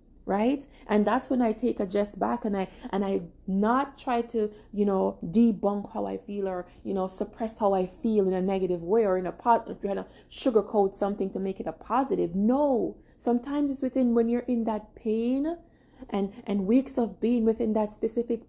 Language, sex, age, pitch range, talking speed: English, female, 20-39, 195-240 Hz, 205 wpm